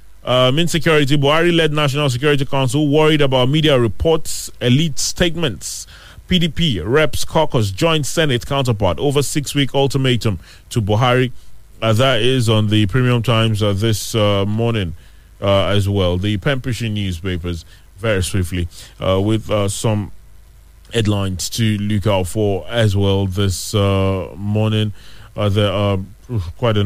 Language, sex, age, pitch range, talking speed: English, male, 30-49, 100-135 Hz, 140 wpm